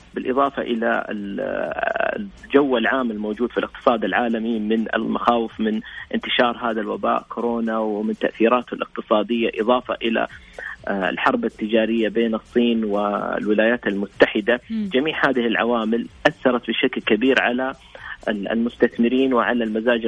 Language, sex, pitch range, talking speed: Arabic, male, 110-125 Hz, 110 wpm